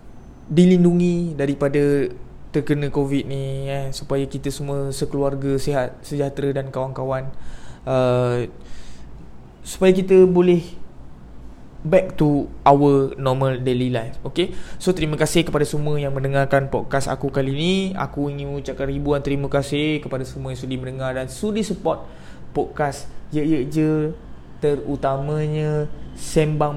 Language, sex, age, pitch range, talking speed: Malay, male, 20-39, 135-180 Hz, 120 wpm